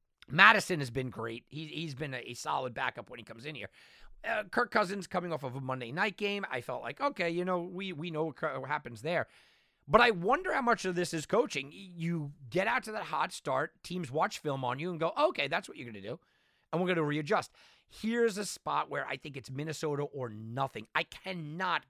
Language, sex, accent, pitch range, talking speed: English, male, American, 125-170 Hz, 225 wpm